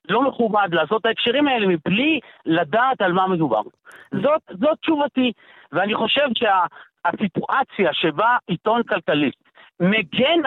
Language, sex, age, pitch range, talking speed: Hebrew, male, 50-69, 195-275 Hz, 120 wpm